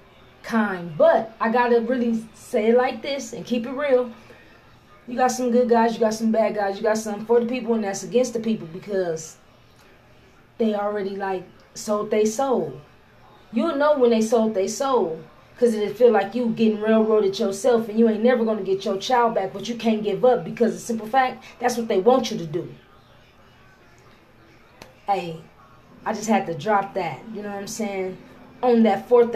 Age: 20-39